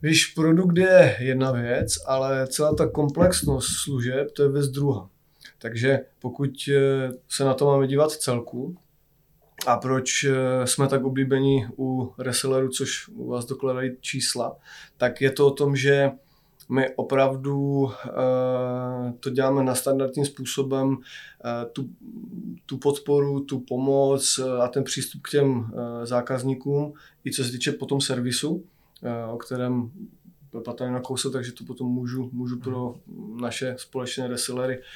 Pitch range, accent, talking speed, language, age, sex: 125-140 Hz, native, 135 wpm, Czech, 20-39, male